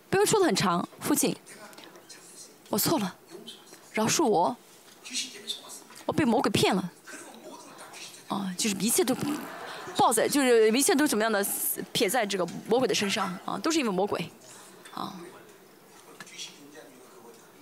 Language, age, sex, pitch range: Chinese, 20-39, female, 210-315 Hz